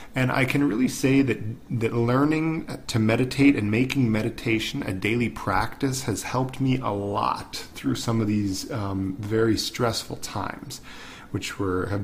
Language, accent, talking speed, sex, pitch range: English, American, 160 wpm, male, 105-130 Hz